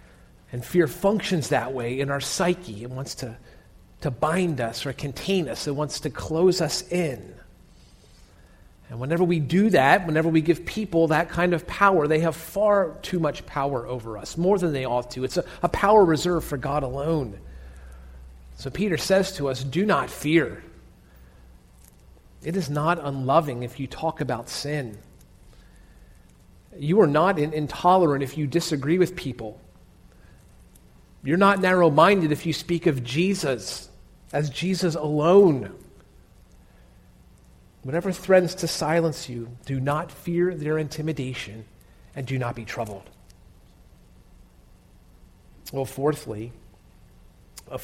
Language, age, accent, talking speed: English, 40-59, American, 140 wpm